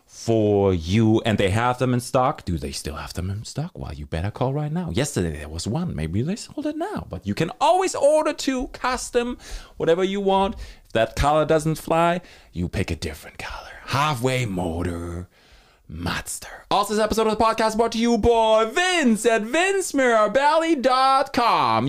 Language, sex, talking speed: English, male, 180 wpm